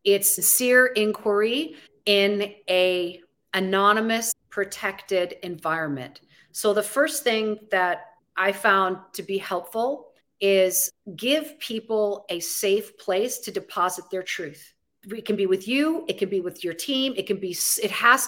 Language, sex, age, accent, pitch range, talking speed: English, female, 40-59, American, 180-225 Hz, 145 wpm